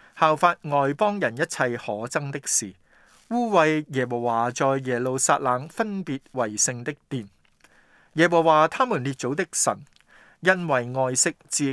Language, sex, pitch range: Chinese, male, 120-170 Hz